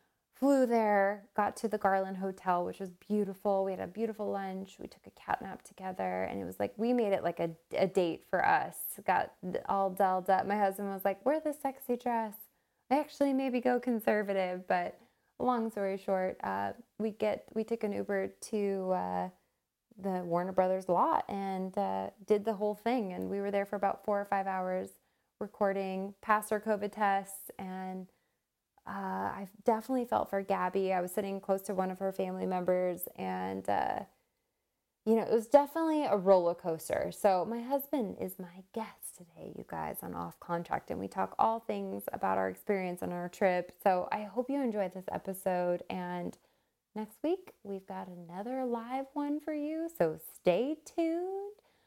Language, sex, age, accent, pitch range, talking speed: English, female, 20-39, American, 185-225 Hz, 185 wpm